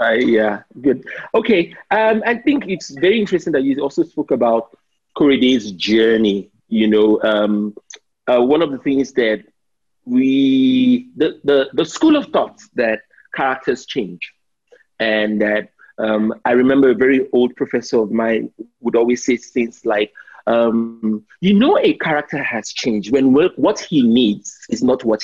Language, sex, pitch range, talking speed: English, male, 120-195 Hz, 155 wpm